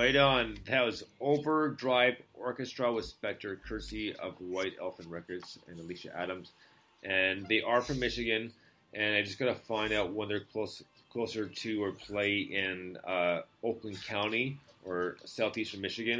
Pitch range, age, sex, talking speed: 90-110 Hz, 30-49, male, 150 wpm